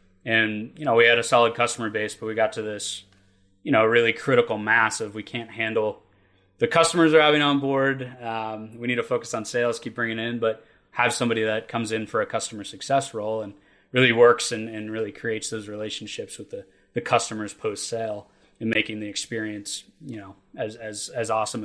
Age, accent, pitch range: 20-39, American, 110-135 Hz